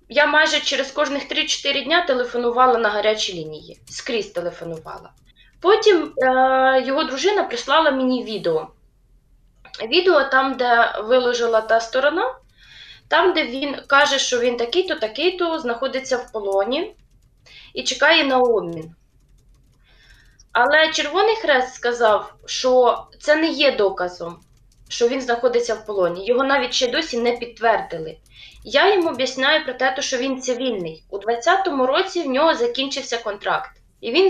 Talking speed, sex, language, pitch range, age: 135 wpm, female, Ukrainian, 235-310 Hz, 20-39